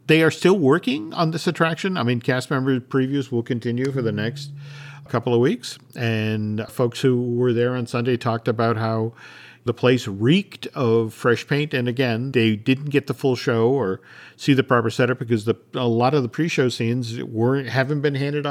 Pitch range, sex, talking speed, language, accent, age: 120-155 Hz, male, 200 wpm, English, American, 50-69